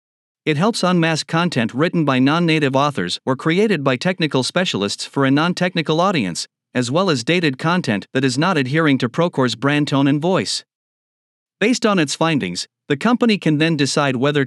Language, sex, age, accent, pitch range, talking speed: English, male, 50-69, American, 135-175 Hz, 175 wpm